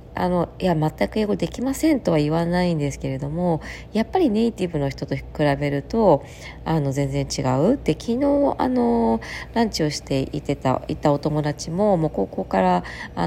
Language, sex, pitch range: Japanese, female, 135-185 Hz